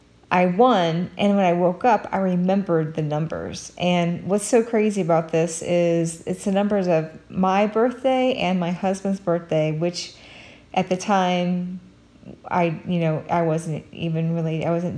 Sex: female